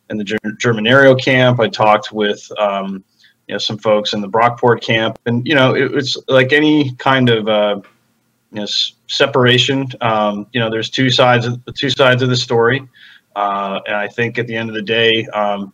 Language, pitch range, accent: English, 110-125 Hz, American